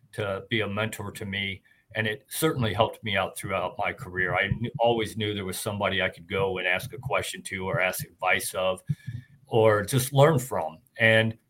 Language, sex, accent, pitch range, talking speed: English, male, American, 105-130 Hz, 205 wpm